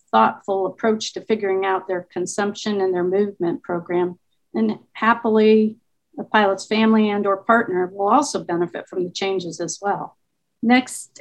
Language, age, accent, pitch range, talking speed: English, 50-69, American, 185-225 Hz, 150 wpm